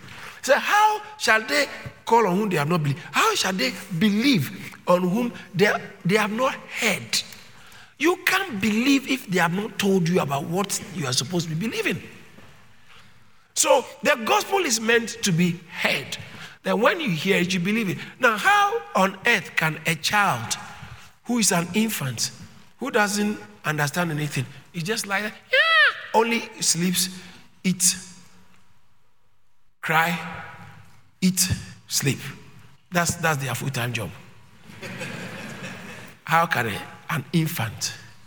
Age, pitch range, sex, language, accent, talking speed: 50-69, 150-215 Hz, male, English, Nigerian, 145 wpm